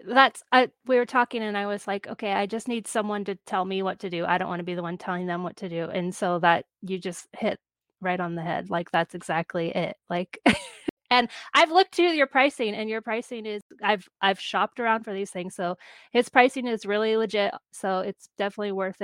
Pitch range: 185-240 Hz